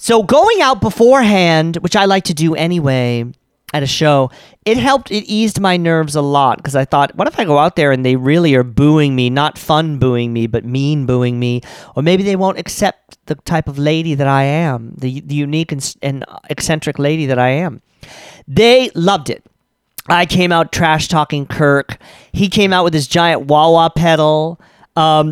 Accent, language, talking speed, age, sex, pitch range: American, English, 195 wpm, 40-59, male, 145-185 Hz